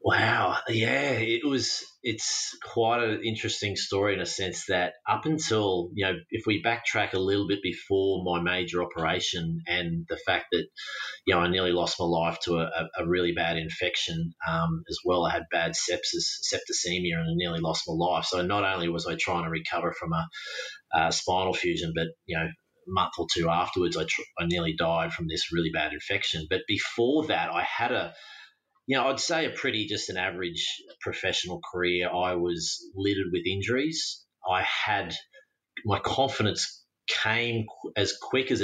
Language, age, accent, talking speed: English, 30-49, Australian, 185 wpm